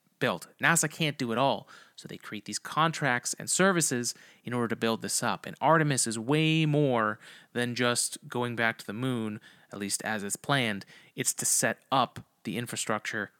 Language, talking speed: English, 190 wpm